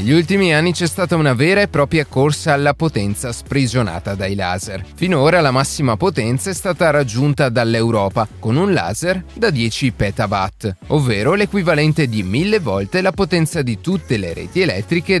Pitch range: 110-165 Hz